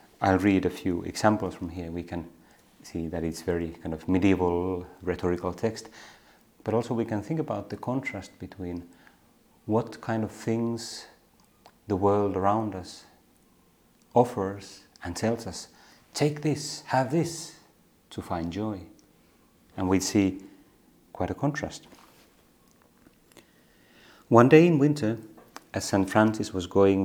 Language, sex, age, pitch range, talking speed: Finnish, male, 30-49, 95-120 Hz, 135 wpm